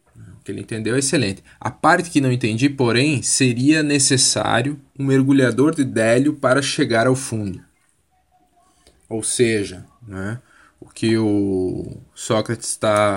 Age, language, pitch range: 20-39, Portuguese, 110-135 Hz